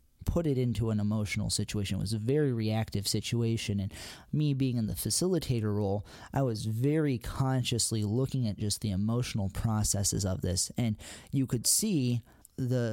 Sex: male